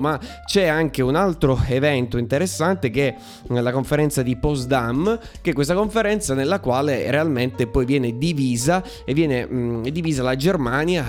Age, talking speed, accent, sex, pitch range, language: 20-39, 155 wpm, native, male, 120-155 Hz, Italian